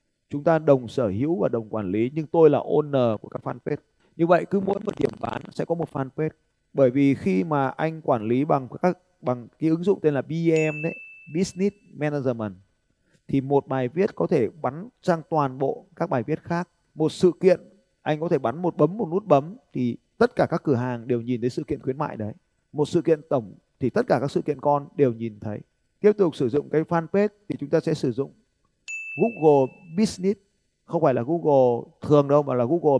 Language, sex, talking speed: Vietnamese, male, 225 wpm